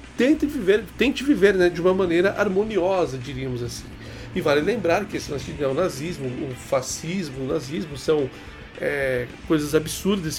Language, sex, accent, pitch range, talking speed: Portuguese, male, Brazilian, 135-165 Hz, 135 wpm